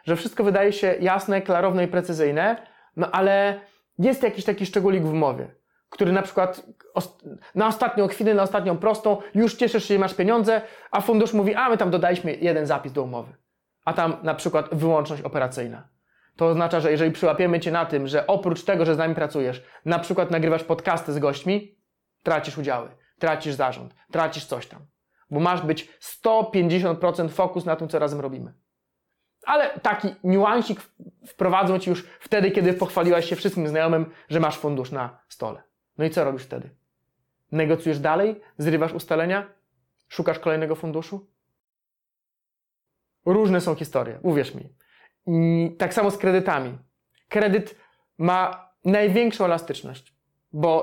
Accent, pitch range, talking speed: native, 160-200 Hz, 150 wpm